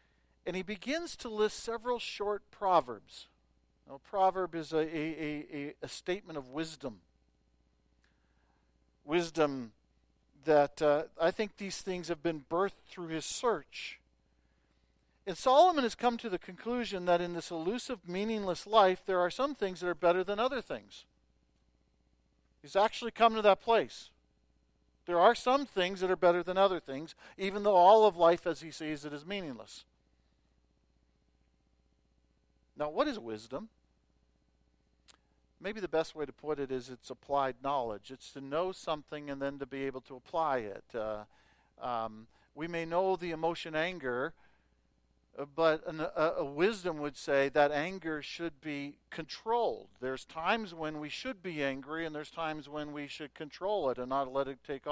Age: 50-69